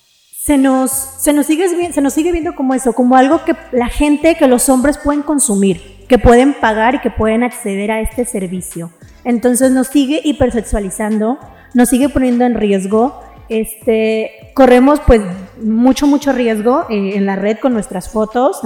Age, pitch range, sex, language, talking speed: 30-49, 220-265 Hz, female, Spanish, 170 wpm